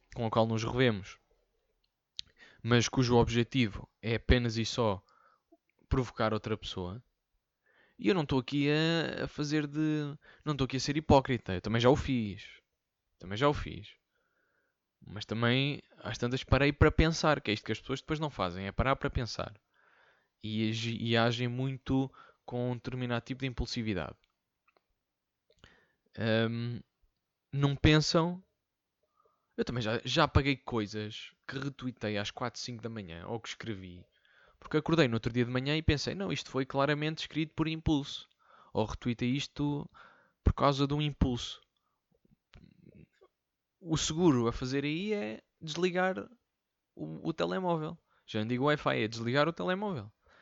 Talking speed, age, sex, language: 150 wpm, 20-39, male, Portuguese